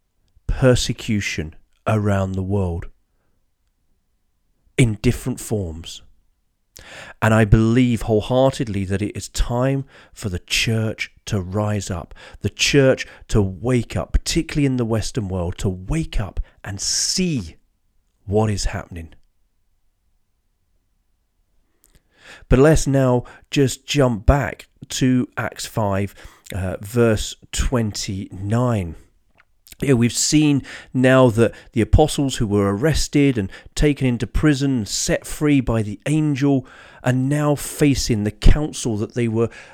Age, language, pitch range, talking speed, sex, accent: 40-59, English, 95-130 Hz, 120 wpm, male, British